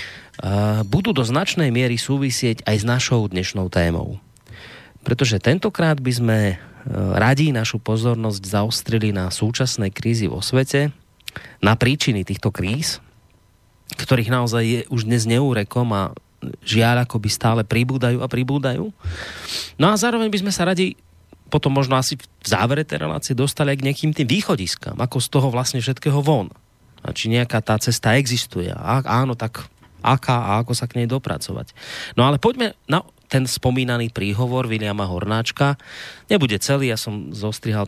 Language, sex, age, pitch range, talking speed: Slovak, male, 30-49, 100-130 Hz, 155 wpm